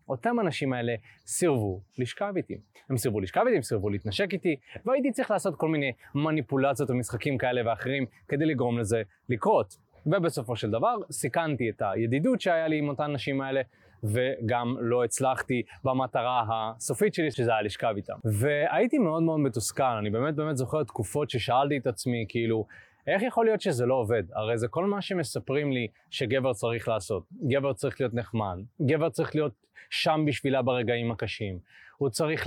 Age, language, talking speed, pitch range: 20-39, Hebrew, 170 wpm, 115-165 Hz